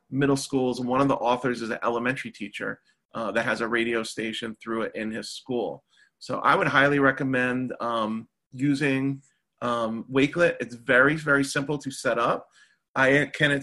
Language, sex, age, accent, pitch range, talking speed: English, male, 30-49, American, 120-140 Hz, 180 wpm